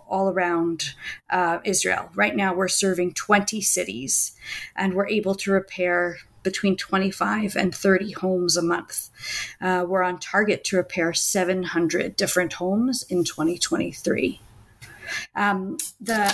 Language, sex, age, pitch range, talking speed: English, female, 40-59, 175-200 Hz, 130 wpm